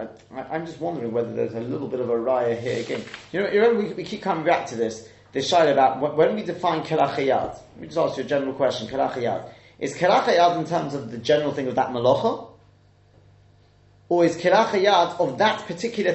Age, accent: 30-49, British